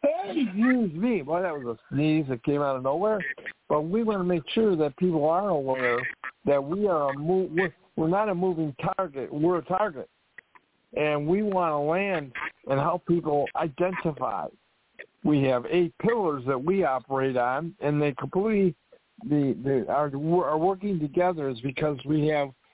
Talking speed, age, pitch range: 175 wpm, 60-79, 140-185 Hz